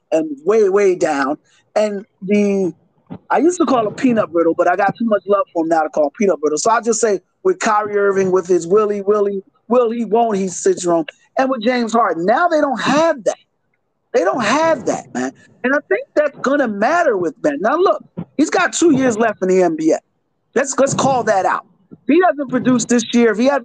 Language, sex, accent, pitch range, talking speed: English, male, American, 195-255 Hz, 235 wpm